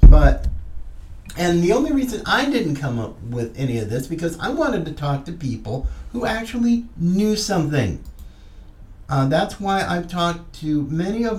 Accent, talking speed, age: American, 170 wpm, 50-69